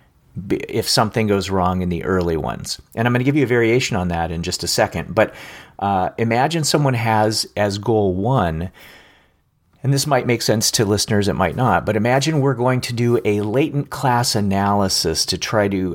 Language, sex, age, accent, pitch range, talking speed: English, male, 40-59, American, 95-125 Hz, 200 wpm